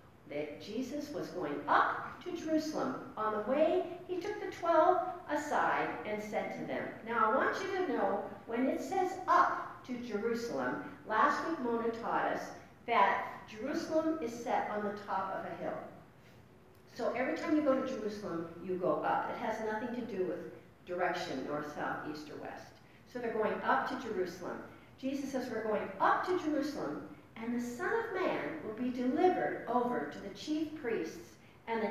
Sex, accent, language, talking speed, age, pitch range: female, American, English, 180 wpm, 50-69, 205-310 Hz